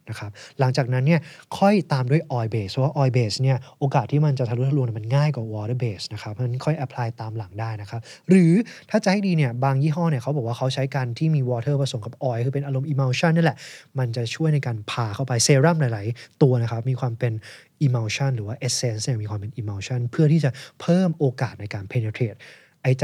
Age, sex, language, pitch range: 20-39, male, Thai, 120-155 Hz